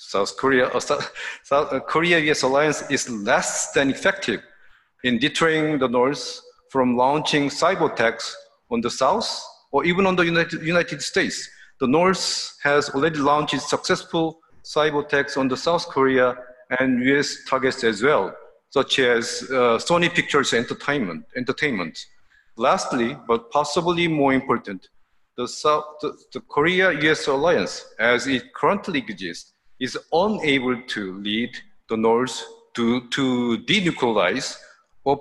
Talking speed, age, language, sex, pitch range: 130 wpm, 50-69, English, male, 130-170 Hz